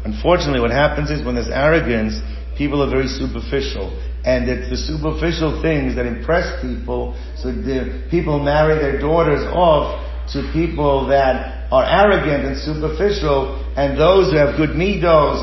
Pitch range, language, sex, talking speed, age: 125-155 Hz, English, male, 150 wpm, 50-69